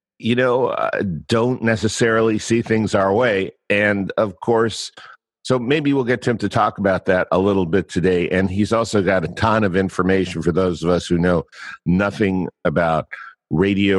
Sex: male